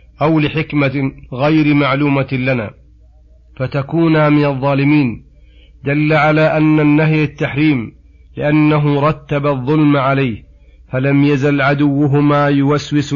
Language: Arabic